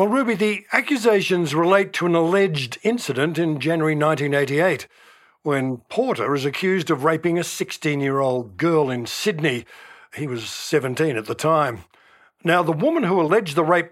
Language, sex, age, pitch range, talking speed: English, male, 60-79, 150-195 Hz, 155 wpm